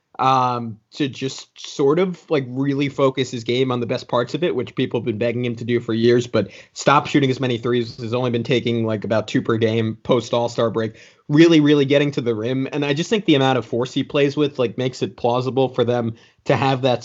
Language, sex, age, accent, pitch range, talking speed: English, male, 30-49, American, 120-145 Hz, 245 wpm